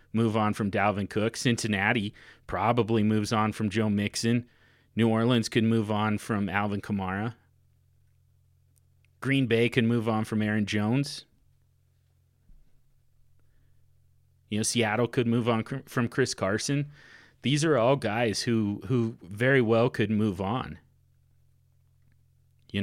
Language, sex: English, male